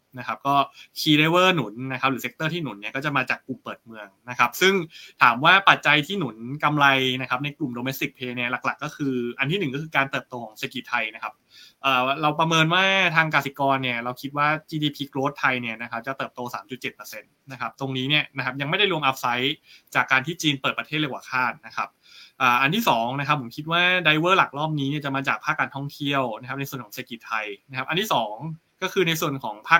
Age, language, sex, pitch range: 20-39, Thai, male, 130-155 Hz